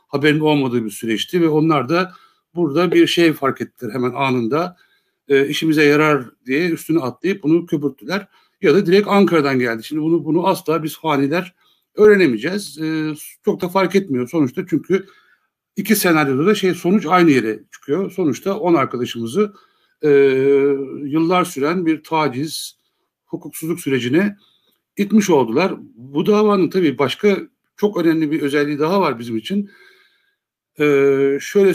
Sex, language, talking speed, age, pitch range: male, Turkish, 140 wpm, 60-79, 140-175 Hz